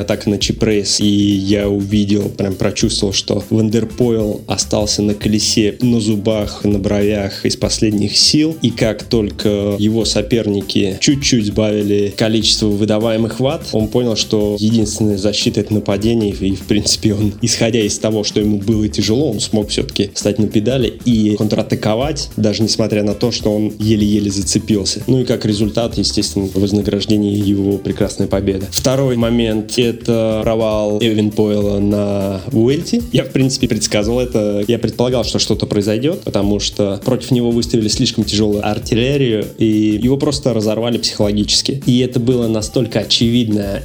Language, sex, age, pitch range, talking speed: Russian, male, 20-39, 105-120 Hz, 150 wpm